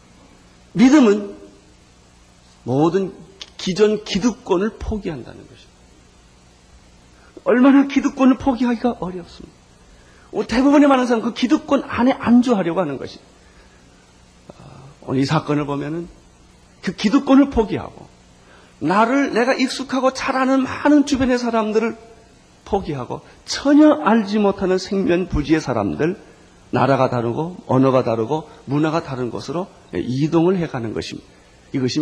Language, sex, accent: Korean, male, native